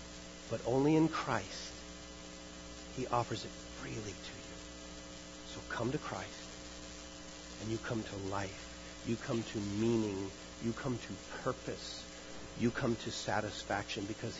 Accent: American